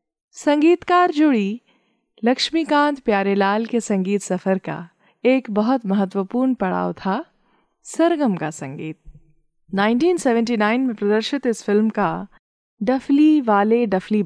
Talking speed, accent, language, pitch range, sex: 105 wpm, native, Hindi, 190-255 Hz, female